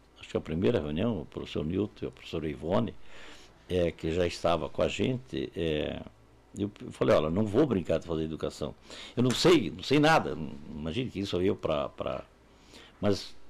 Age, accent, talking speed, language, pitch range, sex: 60-79, Brazilian, 180 wpm, Portuguese, 95-140 Hz, male